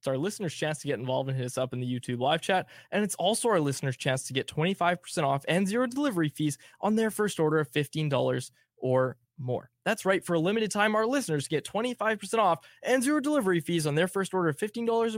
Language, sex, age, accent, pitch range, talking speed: English, male, 20-39, American, 135-195 Hz, 235 wpm